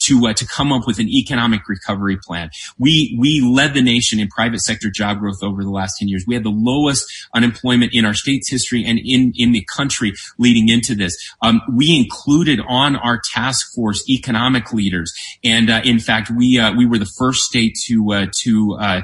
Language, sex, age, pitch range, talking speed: English, male, 30-49, 110-130 Hz, 210 wpm